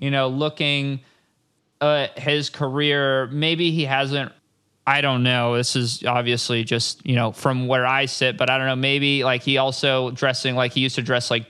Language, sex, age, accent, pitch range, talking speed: English, male, 20-39, American, 130-150 Hz, 195 wpm